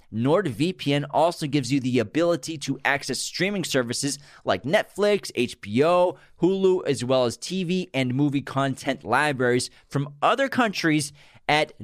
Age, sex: 30-49, male